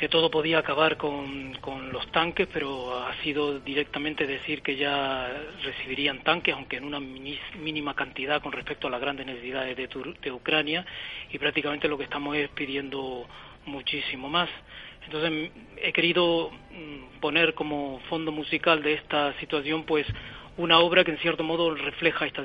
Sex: male